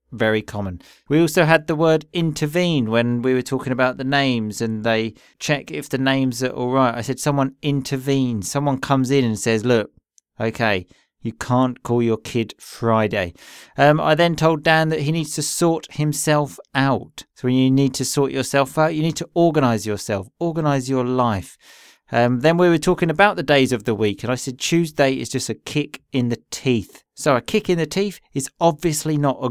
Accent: British